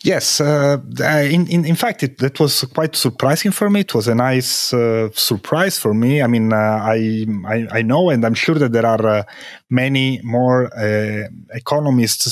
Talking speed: 195 wpm